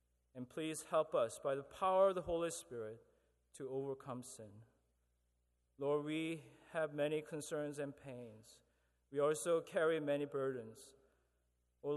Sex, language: male, English